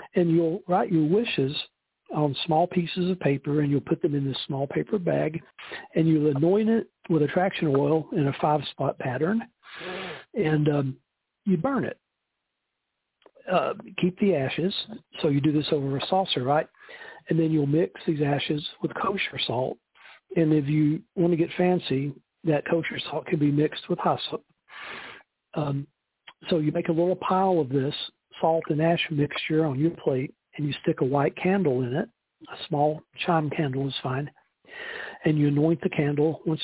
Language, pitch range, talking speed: English, 145-175 Hz, 175 wpm